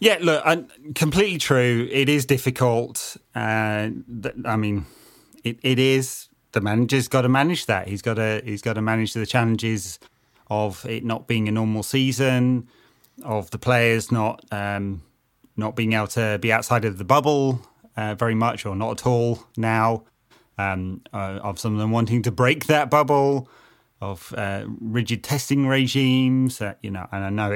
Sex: male